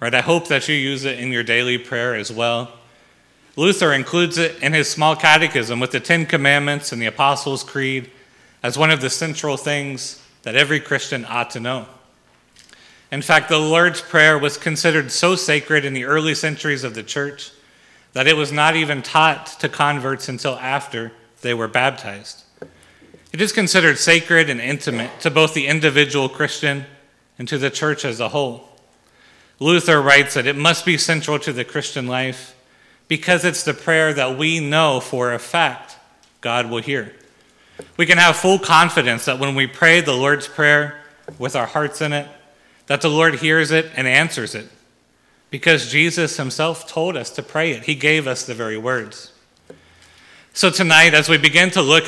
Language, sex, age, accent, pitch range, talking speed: English, male, 30-49, American, 130-160 Hz, 180 wpm